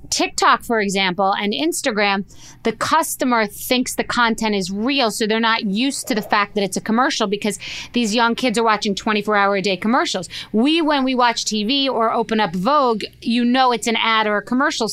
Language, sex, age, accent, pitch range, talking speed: English, female, 30-49, American, 210-255 Hz, 205 wpm